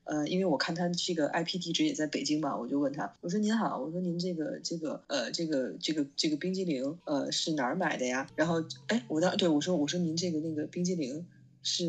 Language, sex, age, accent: Chinese, female, 20-39, native